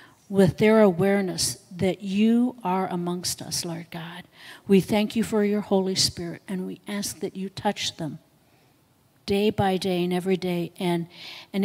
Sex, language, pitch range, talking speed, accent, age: female, English, 175-230 Hz, 165 wpm, American, 50-69